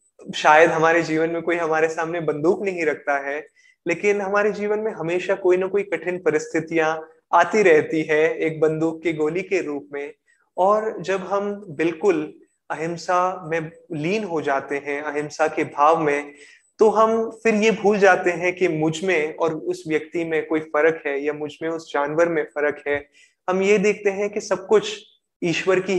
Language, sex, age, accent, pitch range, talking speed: Hindi, male, 20-39, native, 150-185 Hz, 180 wpm